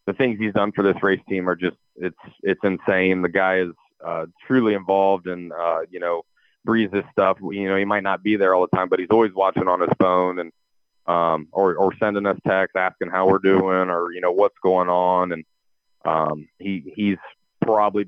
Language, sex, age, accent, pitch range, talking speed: English, male, 30-49, American, 90-100 Hz, 215 wpm